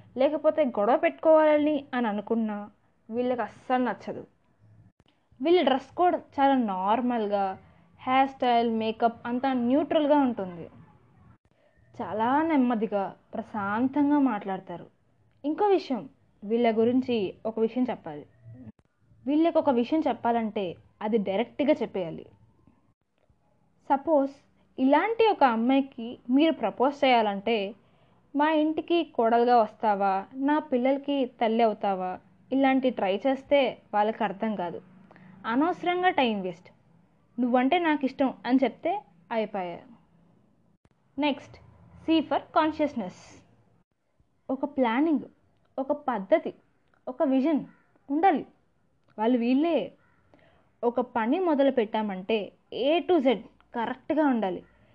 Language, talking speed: Telugu, 95 wpm